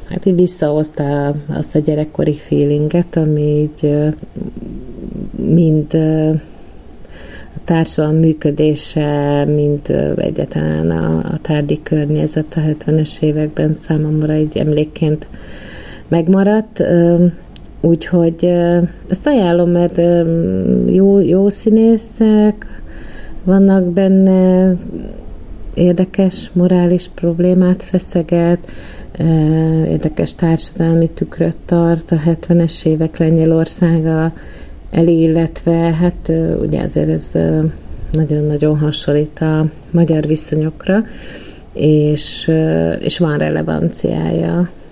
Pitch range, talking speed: 150-175 Hz, 80 wpm